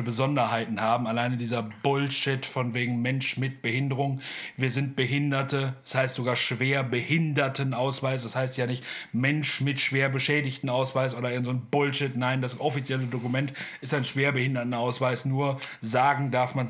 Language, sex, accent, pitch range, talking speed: German, male, German, 125-145 Hz, 150 wpm